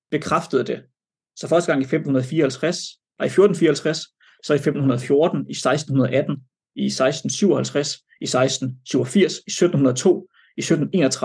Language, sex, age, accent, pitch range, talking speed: Danish, male, 30-49, native, 130-155 Hz, 125 wpm